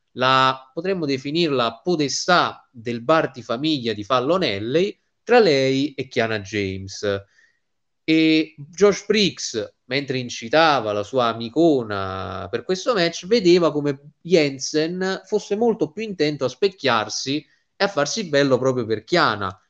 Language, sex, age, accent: Italian, male, 30-49, native